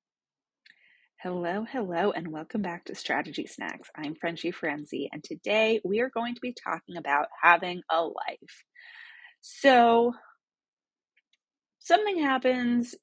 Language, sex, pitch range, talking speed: English, female, 165-240 Hz, 120 wpm